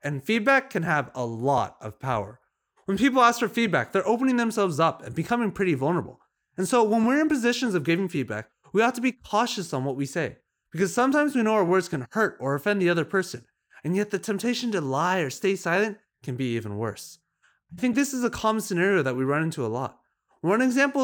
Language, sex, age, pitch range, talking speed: English, male, 30-49, 145-225 Hz, 230 wpm